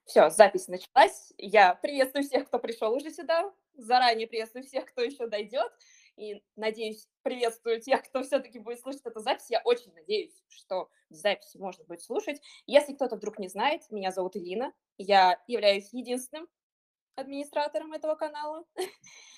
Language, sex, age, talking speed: Russian, female, 20-39, 150 wpm